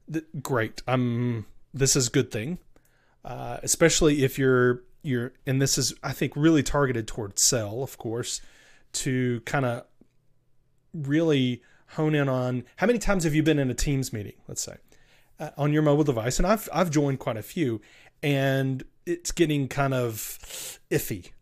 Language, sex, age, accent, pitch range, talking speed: English, male, 30-49, American, 120-145 Hz, 170 wpm